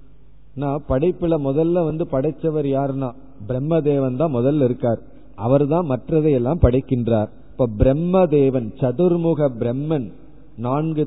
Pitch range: 130-160 Hz